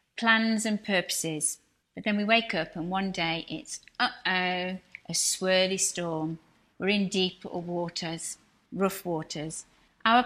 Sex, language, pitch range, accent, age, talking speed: female, English, 175-210 Hz, British, 40-59, 140 wpm